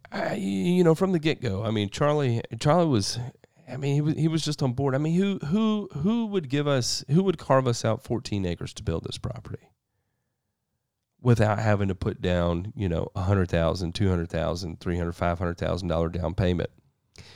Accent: American